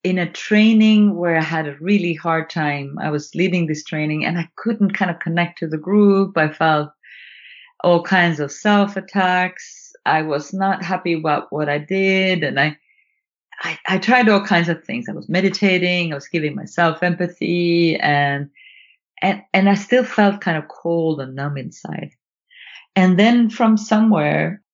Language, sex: English, female